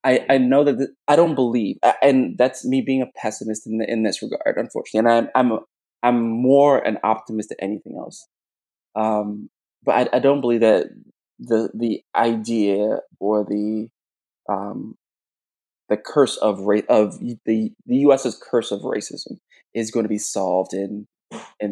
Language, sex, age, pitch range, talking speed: English, male, 20-39, 105-120 Hz, 170 wpm